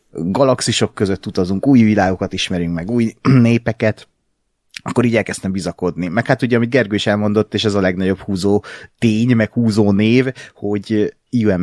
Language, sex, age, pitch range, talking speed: Hungarian, male, 30-49, 95-115 Hz, 160 wpm